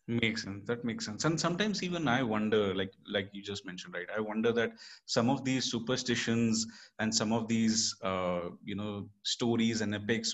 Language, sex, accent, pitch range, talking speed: Hindi, male, native, 105-130 Hz, 190 wpm